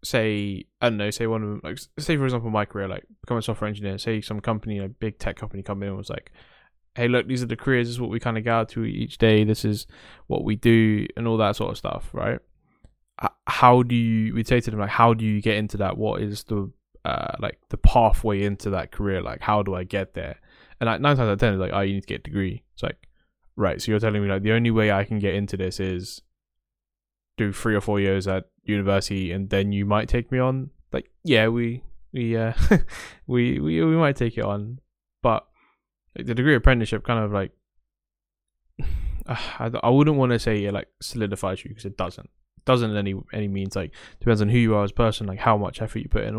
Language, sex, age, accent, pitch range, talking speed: English, male, 10-29, British, 100-115 Hz, 250 wpm